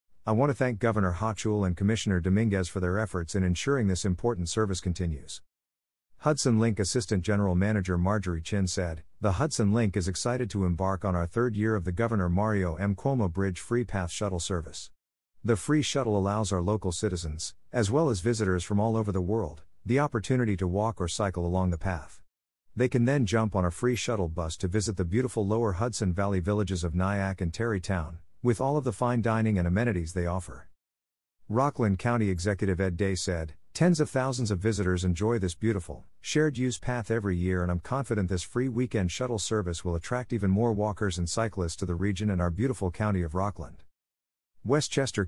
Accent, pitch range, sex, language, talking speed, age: American, 90-115 Hz, male, English, 195 wpm, 50-69